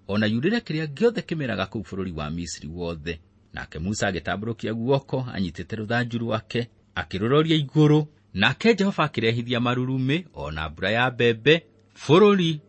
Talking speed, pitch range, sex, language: 130 wpm, 95-140 Hz, male, English